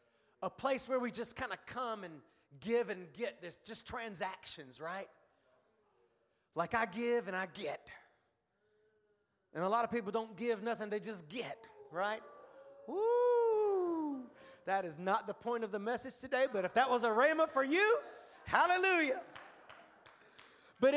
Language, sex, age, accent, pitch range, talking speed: English, male, 30-49, American, 190-275 Hz, 155 wpm